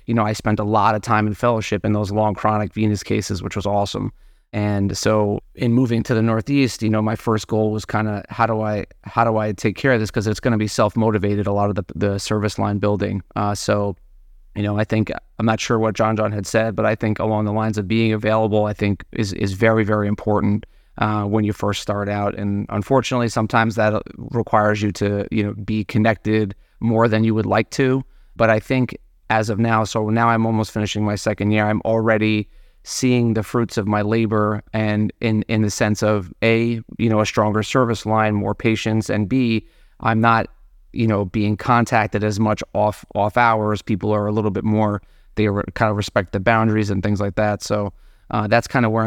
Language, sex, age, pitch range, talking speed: English, male, 30-49, 105-115 Hz, 225 wpm